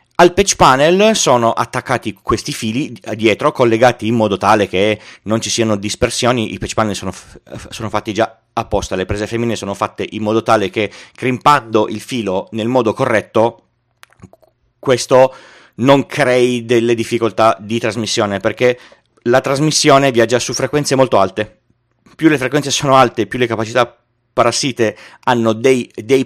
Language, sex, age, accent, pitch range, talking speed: Italian, male, 30-49, native, 110-135 Hz, 155 wpm